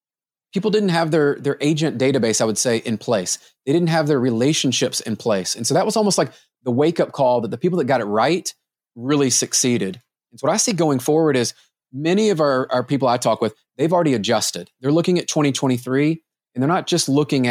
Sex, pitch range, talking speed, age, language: male, 125-160 Hz, 225 wpm, 30-49, English